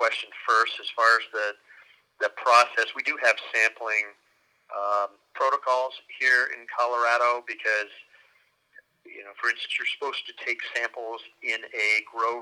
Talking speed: 145 wpm